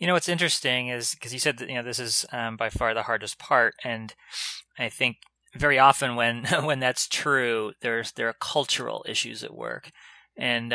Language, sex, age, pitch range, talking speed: English, male, 30-49, 115-140 Hz, 200 wpm